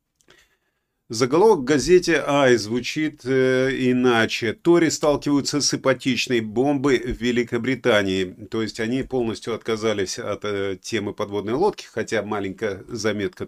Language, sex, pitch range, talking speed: Russian, male, 110-140 Hz, 115 wpm